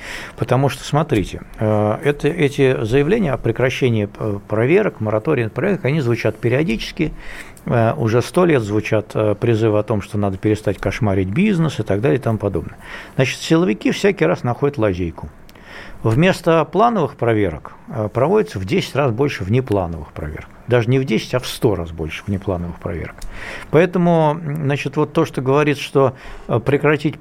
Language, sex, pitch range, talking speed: Russian, male, 110-150 Hz, 150 wpm